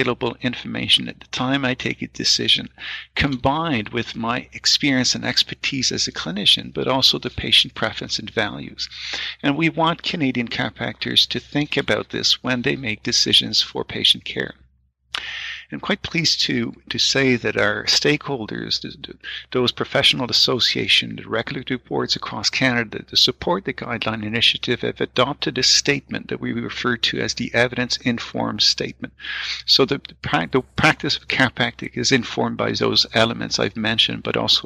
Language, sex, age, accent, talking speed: English, male, 50-69, American, 155 wpm